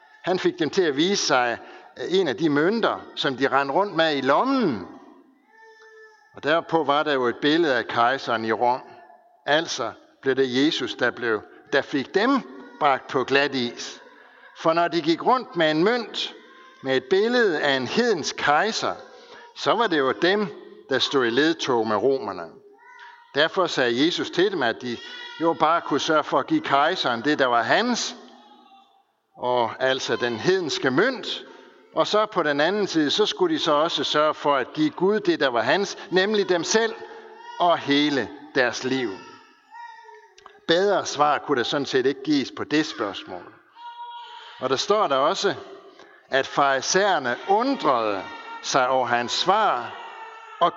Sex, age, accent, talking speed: male, 60-79, native, 170 wpm